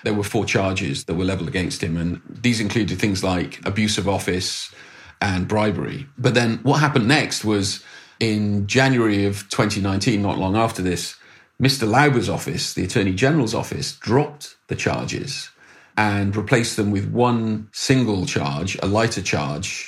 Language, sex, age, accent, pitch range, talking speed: English, male, 40-59, British, 100-125 Hz, 160 wpm